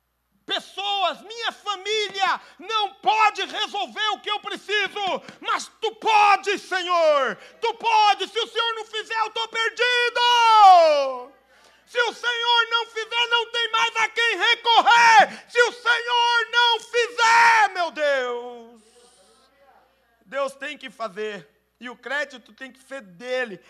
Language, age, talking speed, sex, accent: Portuguese, 50-69, 135 wpm, male, Brazilian